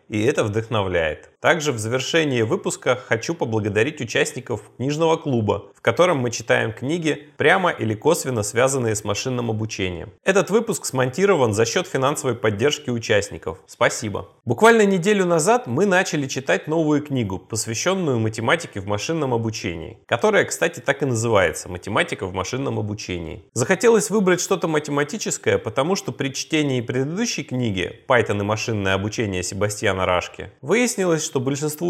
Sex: male